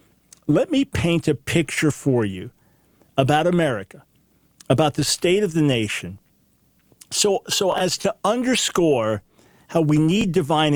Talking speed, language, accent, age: 135 wpm, English, American, 50-69